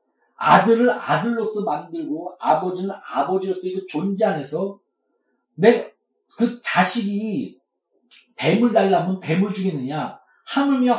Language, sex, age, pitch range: Korean, male, 40-59, 180-240 Hz